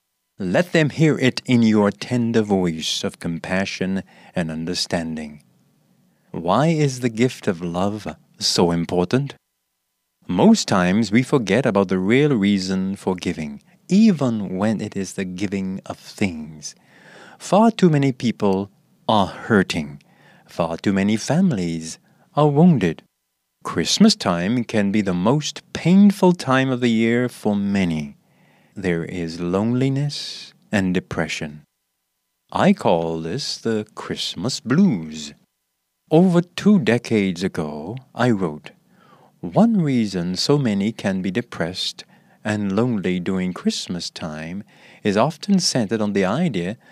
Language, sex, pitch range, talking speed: English, male, 90-145 Hz, 125 wpm